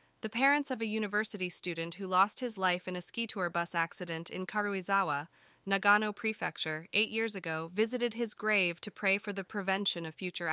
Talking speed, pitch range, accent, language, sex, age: 190 wpm, 170-210 Hz, American, English, female, 20-39